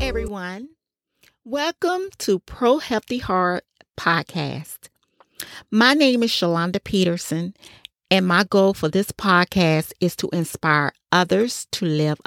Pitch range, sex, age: 165-220 Hz, female, 40-59